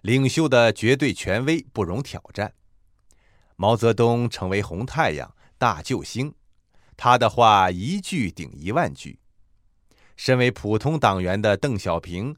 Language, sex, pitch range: Chinese, male, 95-130 Hz